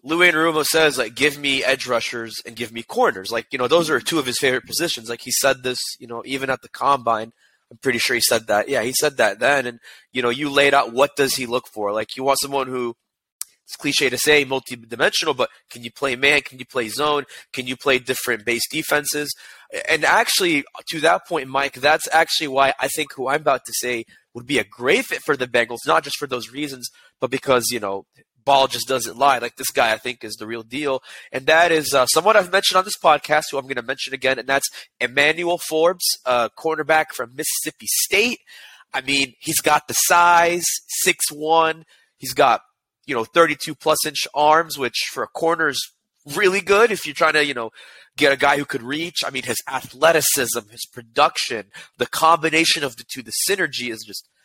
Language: English